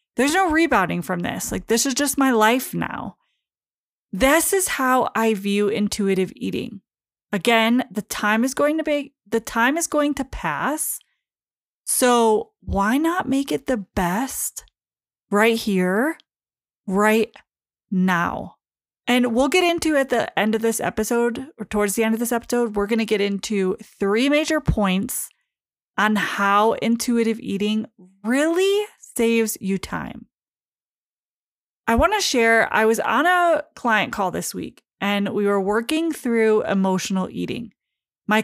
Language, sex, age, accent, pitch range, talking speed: English, female, 20-39, American, 205-265 Hz, 150 wpm